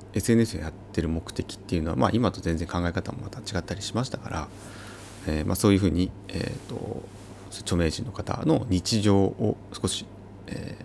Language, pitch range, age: Japanese, 90-110 Hz, 30-49